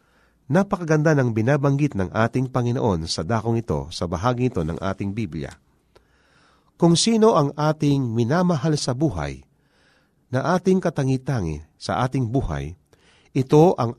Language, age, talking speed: Filipino, 40-59, 130 wpm